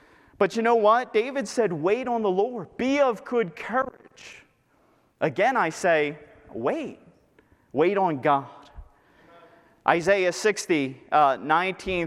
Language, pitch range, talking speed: English, 160-220 Hz, 125 wpm